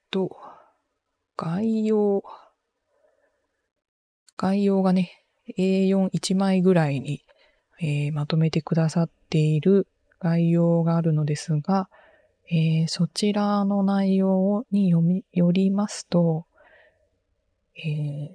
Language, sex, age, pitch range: Japanese, female, 20-39, 155-200 Hz